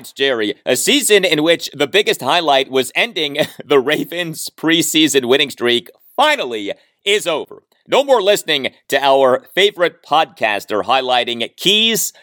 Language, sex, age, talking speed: English, male, 30-49, 135 wpm